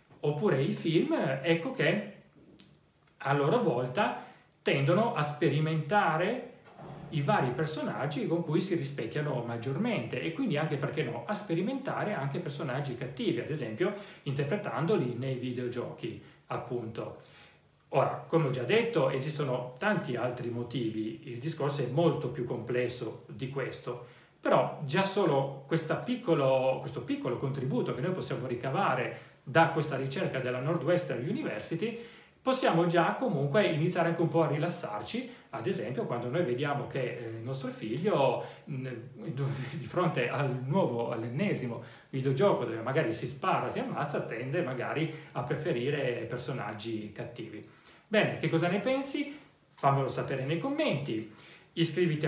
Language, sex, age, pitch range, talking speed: Italian, male, 40-59, 125-175 Hz, 130 wpm